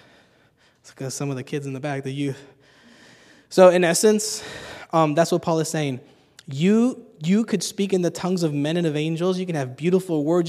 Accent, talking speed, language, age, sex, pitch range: American, 200 wpm, English, 20-39, male, 145-185 Hz